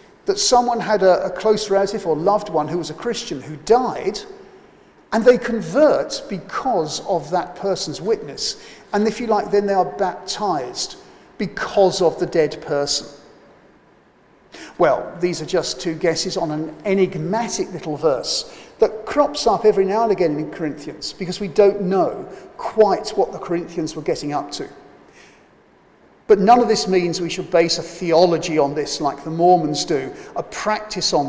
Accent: British